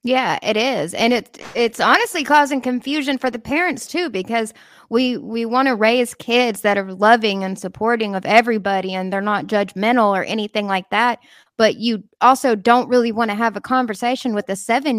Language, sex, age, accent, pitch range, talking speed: English, female, 20-39, American, 200-250 Hz, 190 wpm